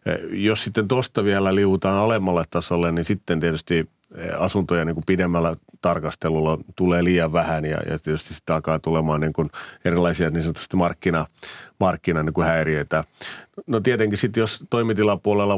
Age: 30-49